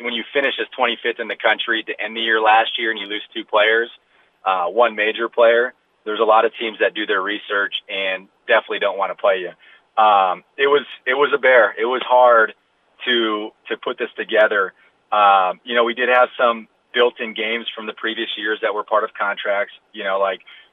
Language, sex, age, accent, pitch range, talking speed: English, male, 30-49, American, 100-115 Hz, 220 wpm